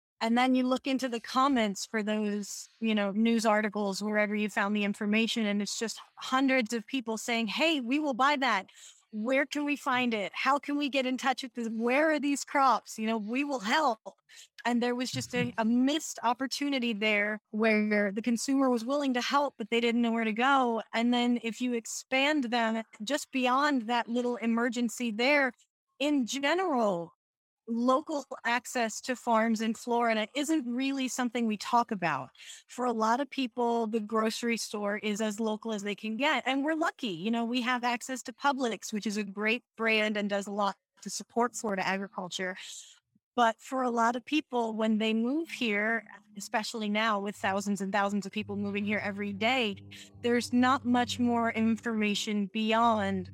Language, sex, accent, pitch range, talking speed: English, female, American, 210-255 Hz, 190 wpm